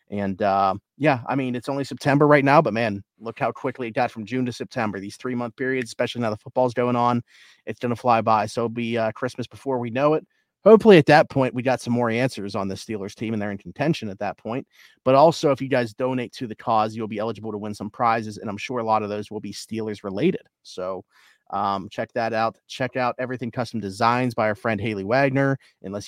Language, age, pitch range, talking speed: English, 30-49, 110-130 Hz, 250 wpm